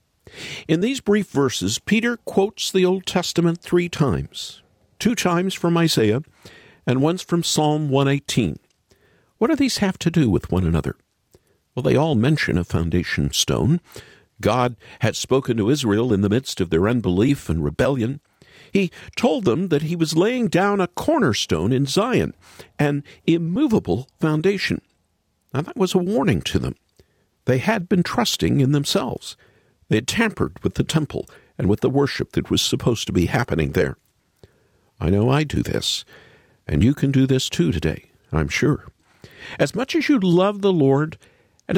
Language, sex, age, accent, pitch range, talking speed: English, male, 50-69, American, 125-195 Hz, 165 wpm